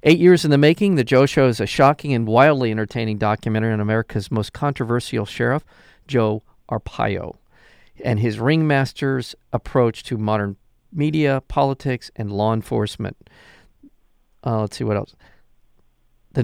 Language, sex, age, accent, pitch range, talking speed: English, male, 50-69, American, 110-140 Hz, 140 wpm